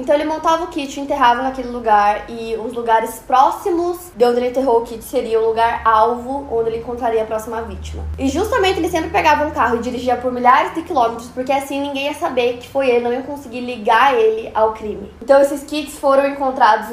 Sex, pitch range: female, 225-265 Hz